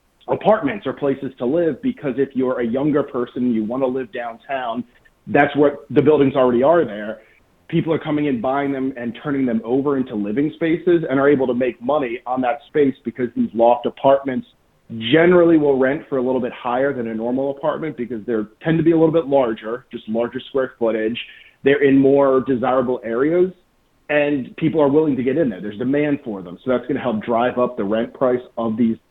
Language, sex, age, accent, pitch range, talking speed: English, male, 30-49, American, 120-150 Hz, 215 wpm